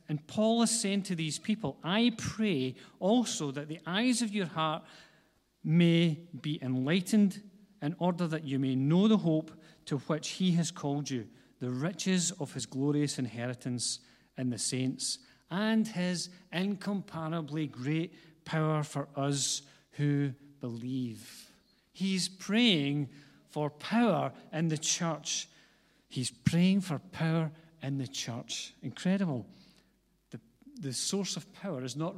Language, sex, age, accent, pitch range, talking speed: English, male, 40-59, British, 135-180 Hz, 135 wpm